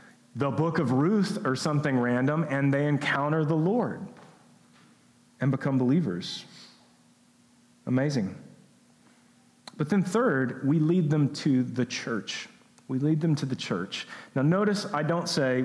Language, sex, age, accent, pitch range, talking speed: English, male, 40-59, American, 135-175 Hz, 140 wpm